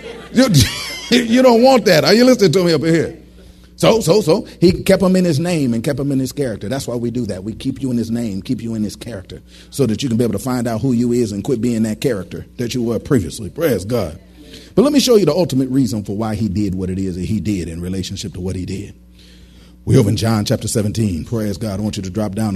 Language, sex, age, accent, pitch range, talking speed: English, male, 40-59, American, 95-130 Hz, 275 wpm